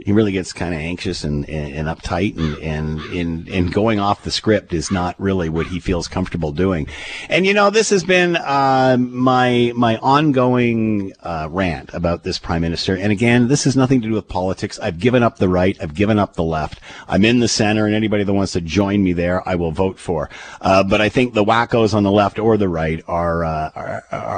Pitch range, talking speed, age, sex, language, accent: 90-120 Hz, 225 wpm, 50-69, male, English, American